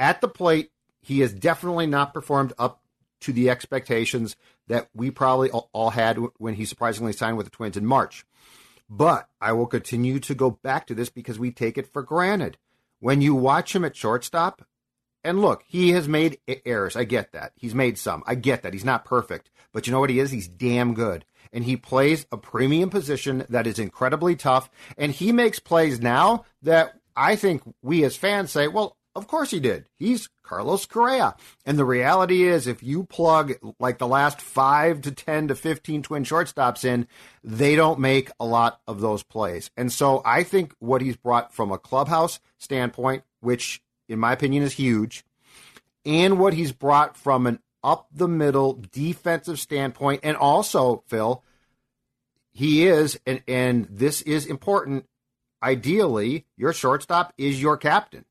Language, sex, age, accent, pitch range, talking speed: English, male, 50-69, American, 120-155 Hz, 180 wpm